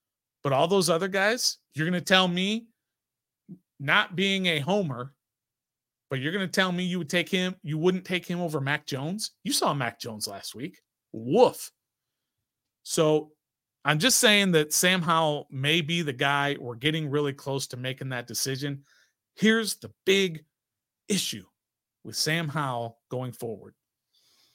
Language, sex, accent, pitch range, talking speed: English, male, American, 135-180 Hz, 155 wpm